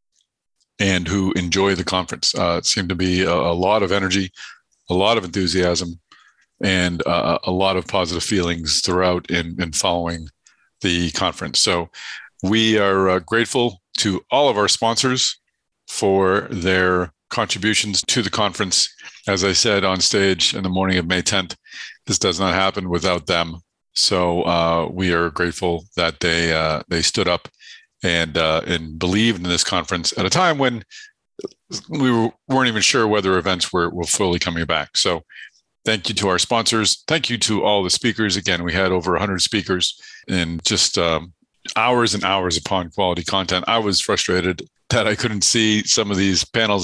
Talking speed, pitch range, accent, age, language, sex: 175 wpm, 85-105 Hz, American, 40-59, English, male